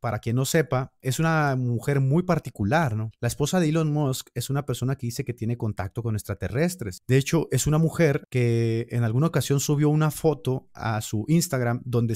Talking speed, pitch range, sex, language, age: 200 wpm, 120-160 Hz, male, Spanish, 30-49